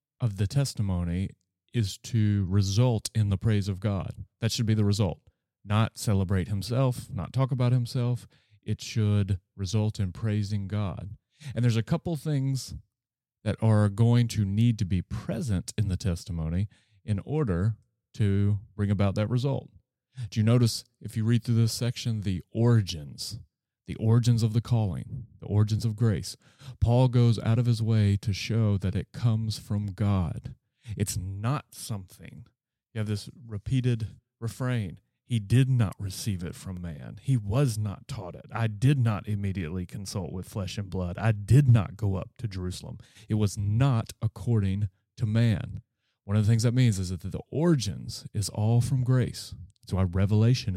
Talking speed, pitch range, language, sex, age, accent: 170 wpm, 100-120 Hz, English, male, 30-49, American